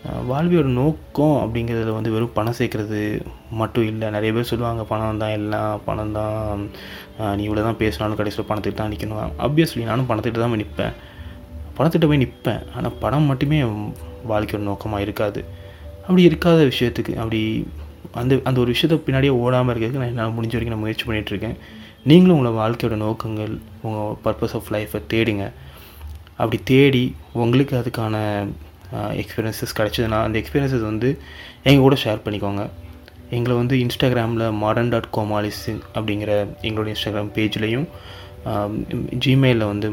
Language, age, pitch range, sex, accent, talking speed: Tamil, 20-39, 105-120 Hz, male, native, 140 wpm